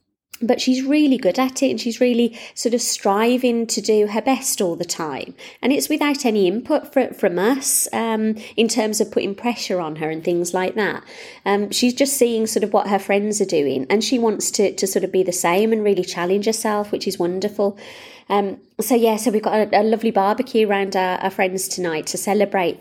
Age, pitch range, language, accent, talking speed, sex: 20-39, 190-240 Hz, English, British, 220 wpm, female